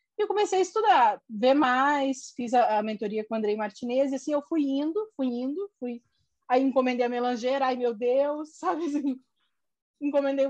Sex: female